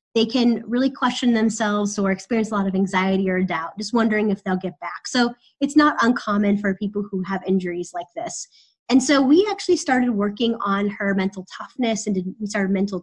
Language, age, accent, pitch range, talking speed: English, 20-39, American, 200-245 Hz, 205 wpm